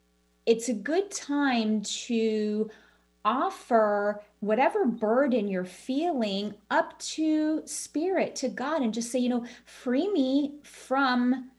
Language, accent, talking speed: English, American, 120 wpm